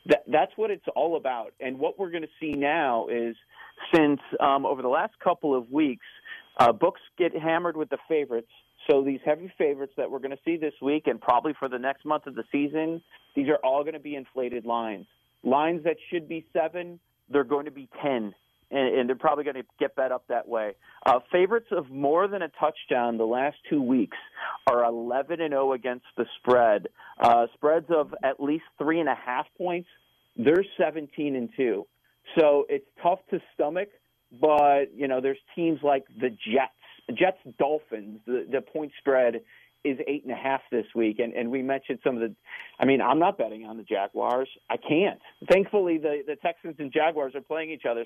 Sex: male